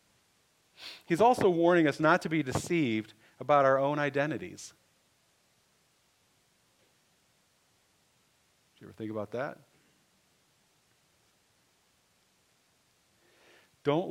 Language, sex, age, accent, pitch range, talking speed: English, male, 50-69, American, 105-135 Hz, 80 wpm